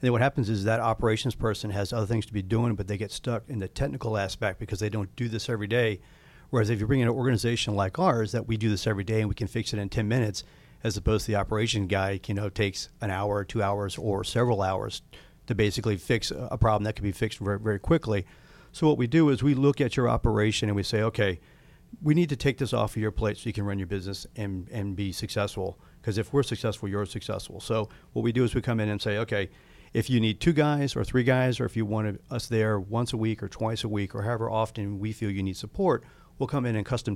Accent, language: American, English